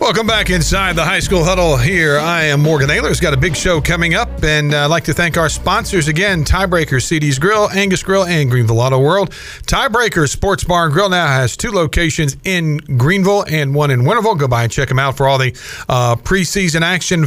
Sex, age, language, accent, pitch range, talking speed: male, 50-69, English, American, 135-180 Hz, 220 wpm